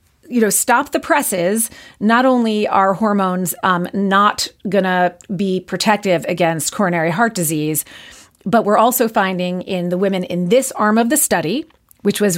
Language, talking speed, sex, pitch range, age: English, 160 wpm, female, 185-230 Hz, 40-59